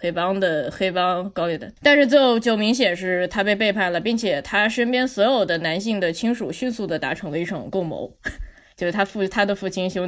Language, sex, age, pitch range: Chinese, female, 20-39, 175-245 Hz